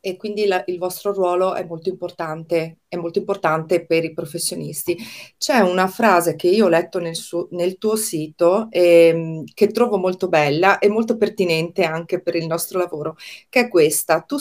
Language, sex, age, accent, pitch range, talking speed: Italian, female, 30-49, native, 165-205 Hz, 180 wpm